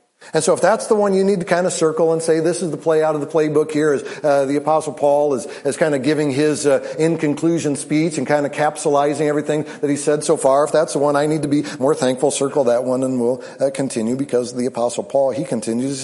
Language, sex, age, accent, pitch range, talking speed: English, male, 50-69, American, 145-180 Hz, 260 wpm